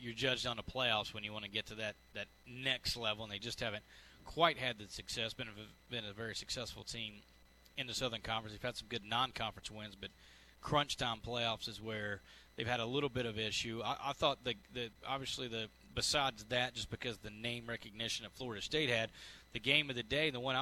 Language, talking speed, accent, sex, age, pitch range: English, 225 wpm, American, male, 30-49, 115-135 Hz